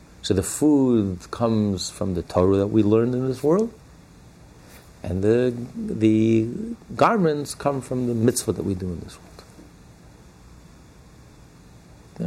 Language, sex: English, male